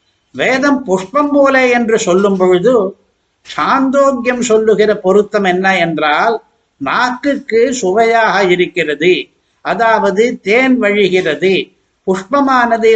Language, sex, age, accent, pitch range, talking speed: Tamil, male, 60-79, native, 185-245 Hz, 85 wpm